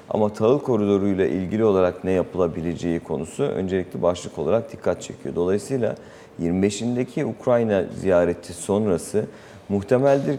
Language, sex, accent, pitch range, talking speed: Turkish, male, native, 90-115 Hz, 110 wpm